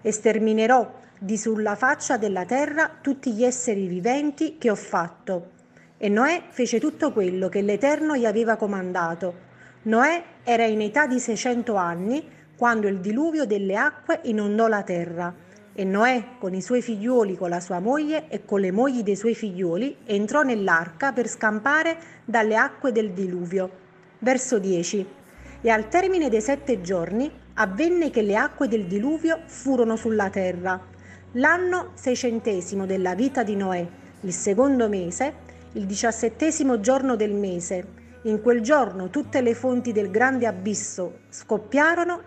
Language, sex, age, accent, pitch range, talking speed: Italian, female, 40-59, native, 200-265 Hz, 150 wpm